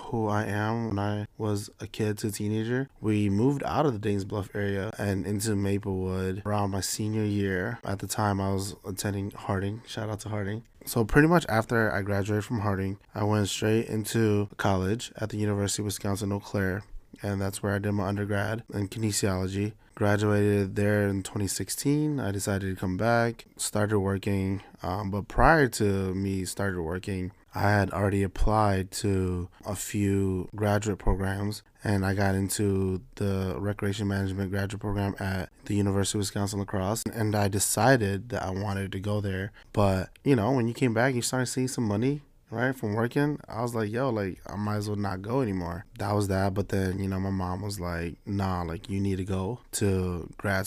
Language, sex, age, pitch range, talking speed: English, male, 20-39, 95-110 Hz, 195 wpm